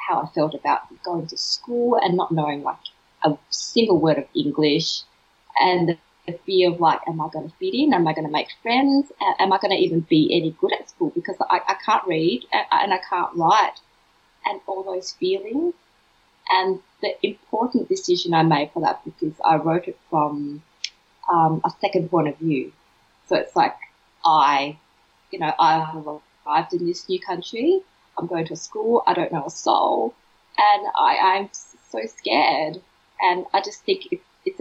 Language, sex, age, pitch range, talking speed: English, female, 20-39, 160-270 Hz, 190 wpm